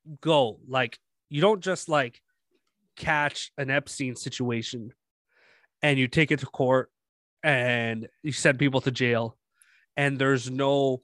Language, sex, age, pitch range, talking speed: English, male, 30-49, 125-150 Hz, 135 wpm